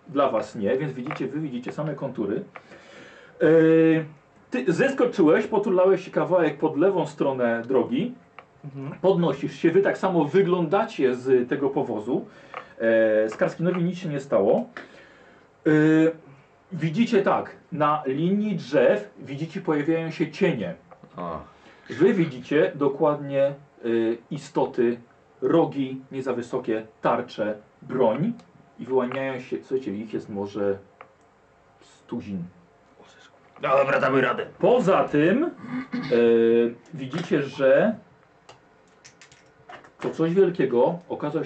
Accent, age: native, 40-59